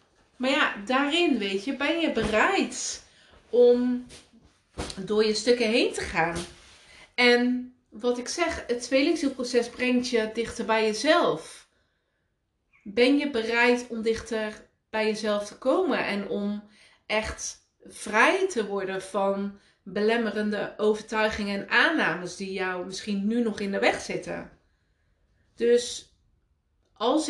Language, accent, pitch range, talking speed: Dutch, Dutch, 200-245 Hz, 125 wpm